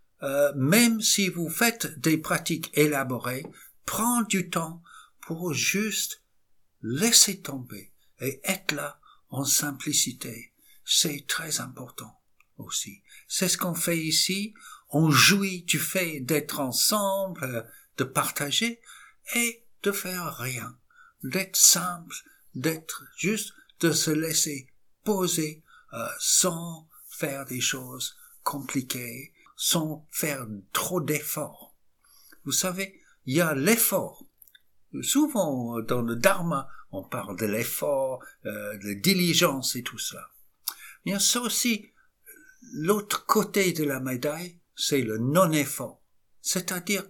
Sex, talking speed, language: male, 115 wpm, English